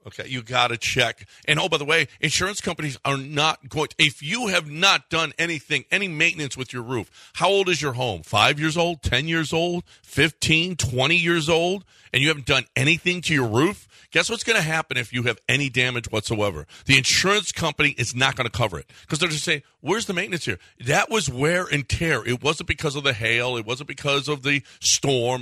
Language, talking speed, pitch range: English, 225 wpm, 125-160 Hz